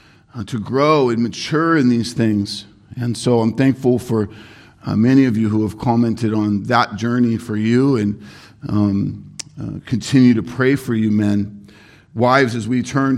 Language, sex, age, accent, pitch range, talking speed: English, male, 50-69, American, 110-135 Hz, 175 wpm